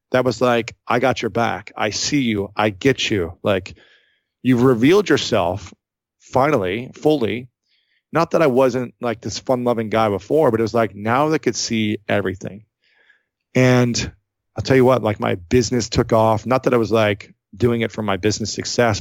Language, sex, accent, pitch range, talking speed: English, male, American, 105-125 Hz, 185 wpm